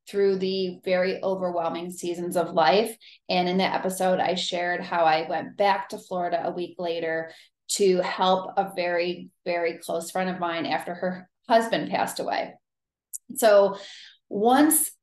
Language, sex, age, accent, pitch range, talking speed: English, female, 30-49, American, 180-205 Hz, 150 wpm